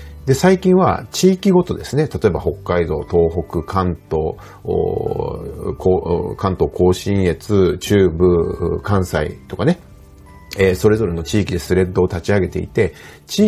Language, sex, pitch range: Japanese, male, 85-120 Hz